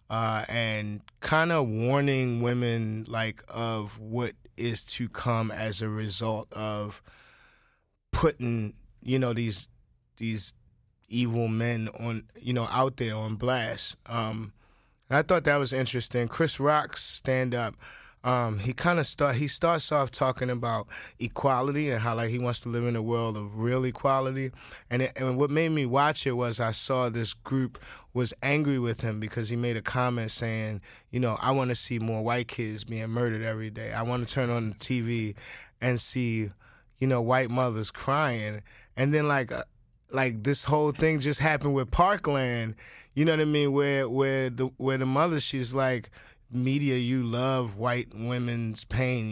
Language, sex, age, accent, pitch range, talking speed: English, male, 20-39, American, 115-135 Hz, 175 wpm